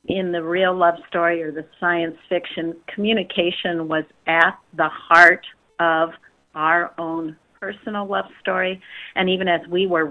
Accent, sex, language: American, female, English